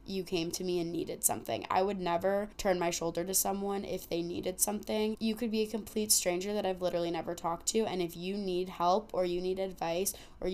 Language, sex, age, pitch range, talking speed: English, female, 20-39, 175-200 Hz, 235 wpm